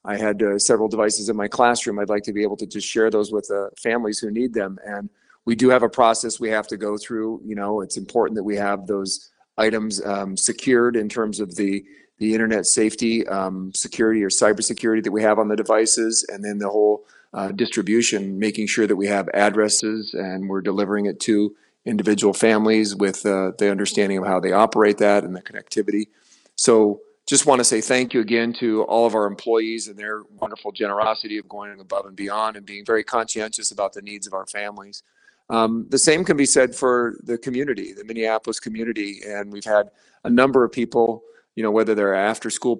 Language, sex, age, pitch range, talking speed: English, male, 40-59, 100-115 Hz, 210 wpm